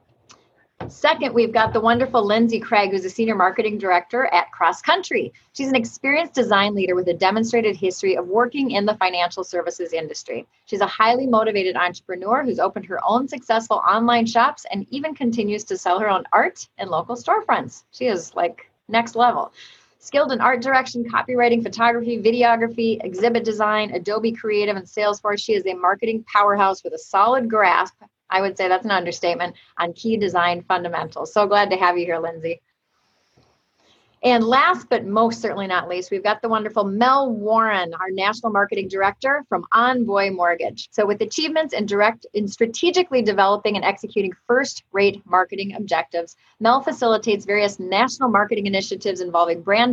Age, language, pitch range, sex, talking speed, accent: 30-49, English, 190-235 Hz, female, 165 wpm, American